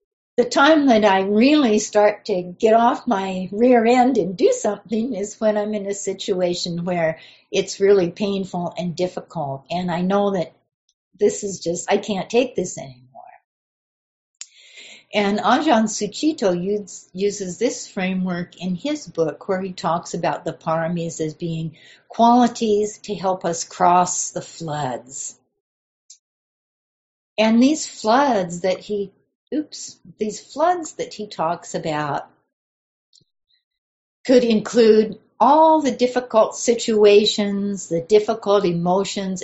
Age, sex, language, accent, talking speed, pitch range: 60-79, female, English, American, 130 wpm, 175-220 Hz